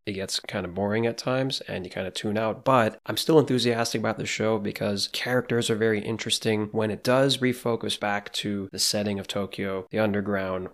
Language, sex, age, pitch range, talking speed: English, male, 20-39, 95-115 Hz, 205 wpm